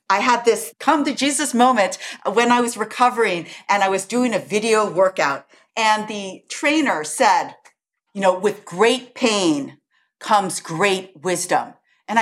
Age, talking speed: 50-69, 150 wpm